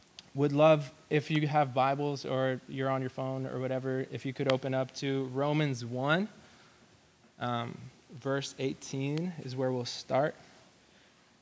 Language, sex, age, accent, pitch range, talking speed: English, male, 20-39, American, 130-145 Hz, 145 wpm